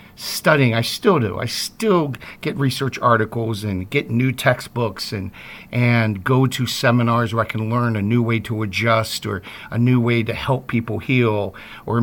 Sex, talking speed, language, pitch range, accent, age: male, 180 wpm, English, 110-135 Hz, American, 50-69